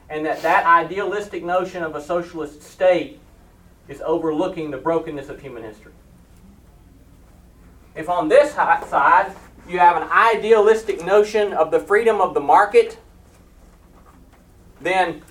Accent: American